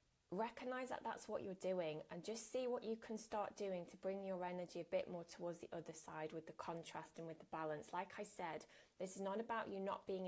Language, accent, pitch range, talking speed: English, British, 170-200 Hz, 245 wpm